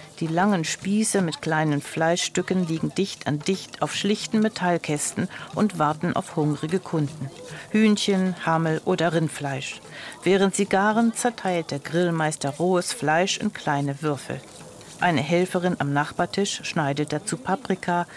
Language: German